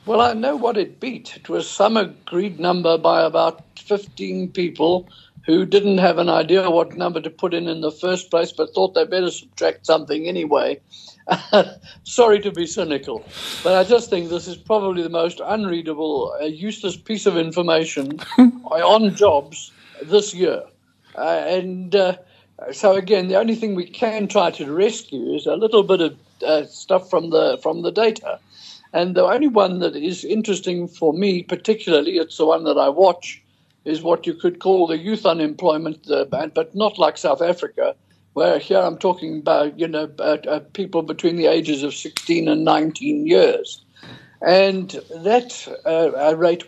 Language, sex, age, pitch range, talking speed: English, male, 60-79, 160-215 Hz, 170 wpm